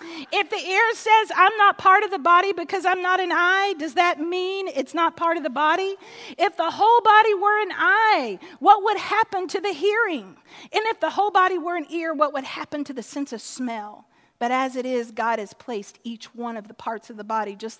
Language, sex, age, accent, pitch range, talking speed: English, female, 40-59, American, 255-350 Hz, 235 wpm